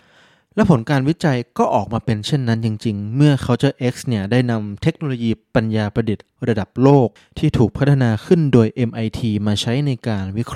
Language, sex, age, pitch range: Thai, male, 20-39, 110-145 Hz